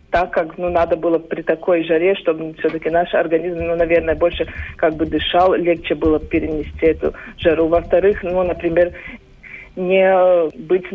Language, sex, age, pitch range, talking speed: Russian, female, 50-69, 165-185 Hz, 155 wpm